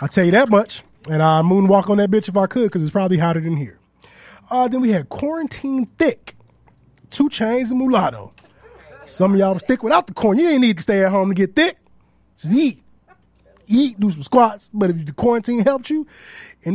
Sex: male